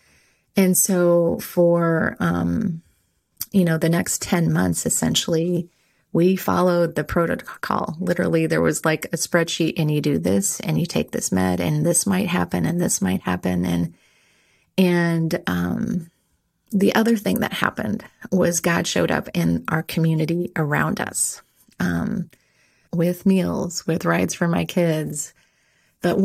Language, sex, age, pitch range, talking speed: English, female, 30-49, 155-180 Hz, 145 wpm